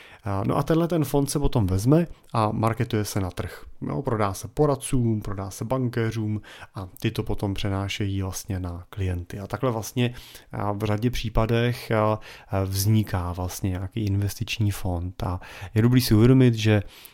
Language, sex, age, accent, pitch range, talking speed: Czech, male, 30-49, native, 100-115 Hz, 160 wpm